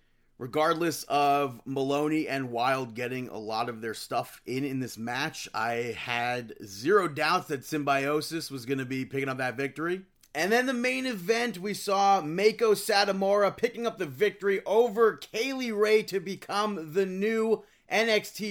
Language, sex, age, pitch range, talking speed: English, male, 30-49, 140-175 Hz, 160 wpm